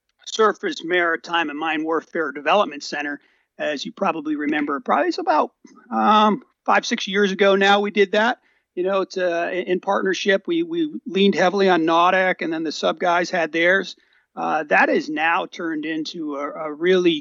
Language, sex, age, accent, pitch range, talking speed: English, male, 40-59, American, 160-265 Hz, 180 wpm